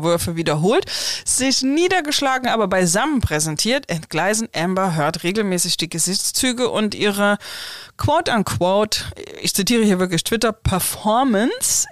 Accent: German